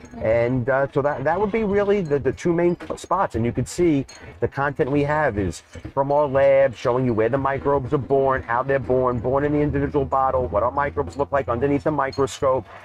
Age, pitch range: 40-59, 110-135 Hz